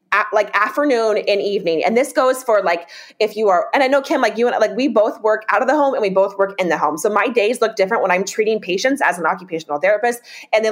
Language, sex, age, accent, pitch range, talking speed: English, female, 20-39, American, 195-245 Hz, 275 wpm